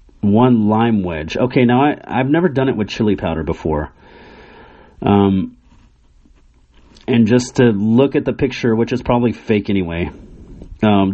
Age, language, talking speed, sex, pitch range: 30-49, English, 150 wpm, male, 100-140 Hz